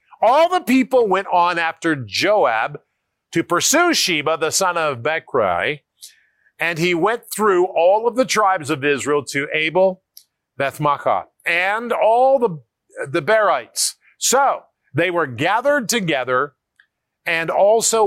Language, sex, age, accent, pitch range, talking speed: English, male, 50-69, American, 150-225 Hz, 130 wpm